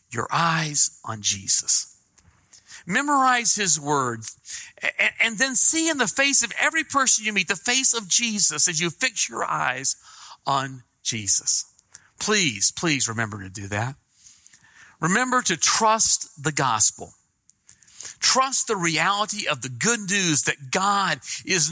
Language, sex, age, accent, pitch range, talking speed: English, male, 50-69, American, 130-220 Hz, 140 wpm